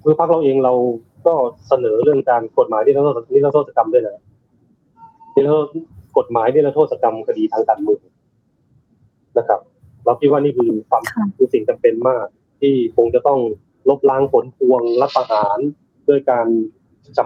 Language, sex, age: Thai, male, 20-39